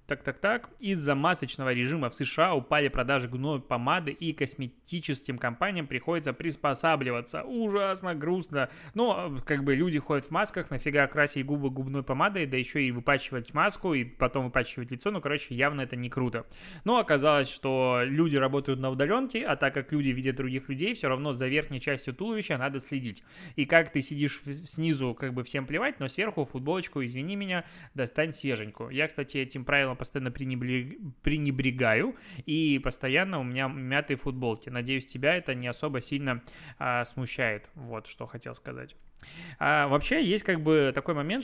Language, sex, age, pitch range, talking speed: Russian, male, 20-39, 125-155 Hz, 165 wpm